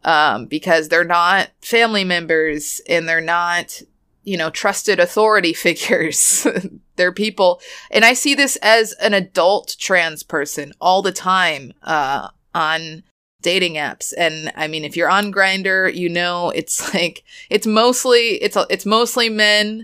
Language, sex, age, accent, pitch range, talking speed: English, female, 20-39, American, 165-220 Hz, 150 wpm